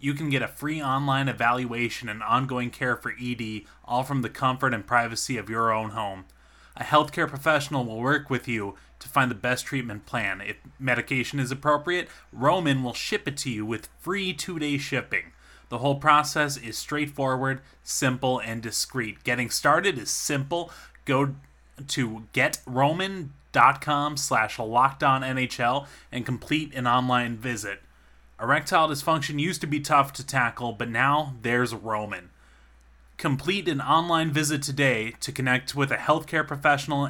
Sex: male